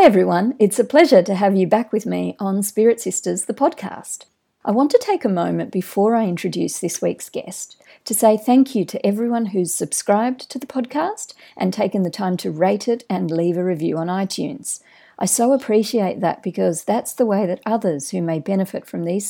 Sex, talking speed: female, 205 wpm